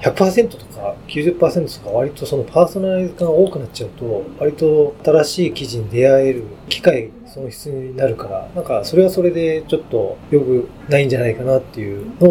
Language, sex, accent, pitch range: Japanese, male, native, 120-170 Hz